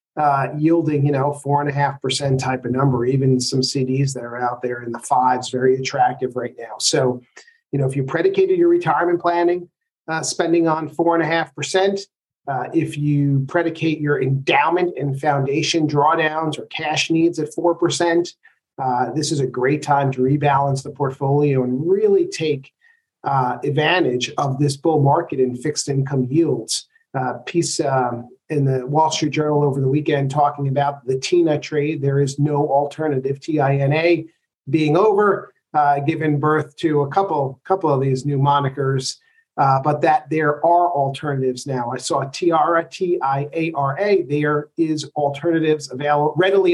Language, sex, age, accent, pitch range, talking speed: English, male, 40-59, American, 135-165 Hz, 165 wpm